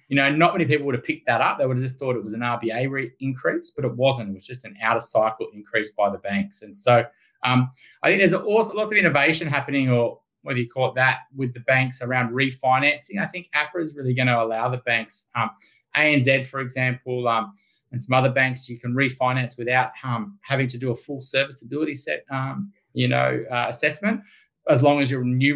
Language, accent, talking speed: English, Australian, 225 wpm